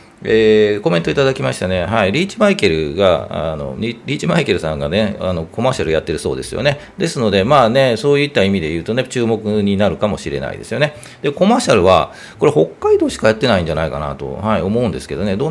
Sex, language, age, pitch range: male, Japanese, 40-59, 100-135 Hz